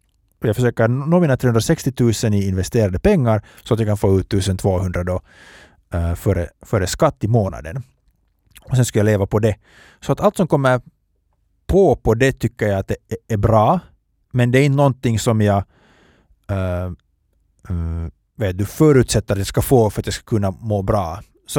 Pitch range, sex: 100-130 Hz, male